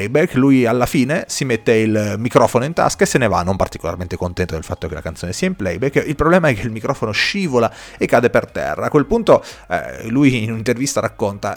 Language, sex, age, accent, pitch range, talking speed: Italian, male, 30-49, native, 95-130 Hz, 225 wpm